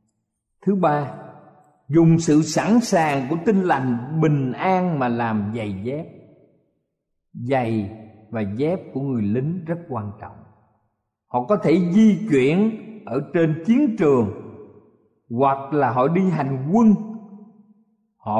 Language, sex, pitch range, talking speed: Vietnamese, male, 120-185 Hz, 130 wpm